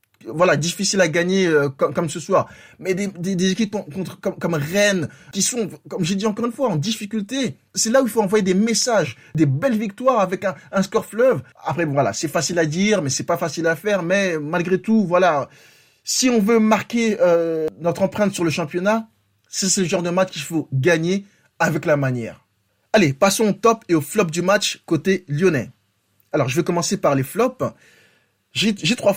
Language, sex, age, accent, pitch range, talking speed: French, male, 20-39, French, 145-190 Hz, 215 wpm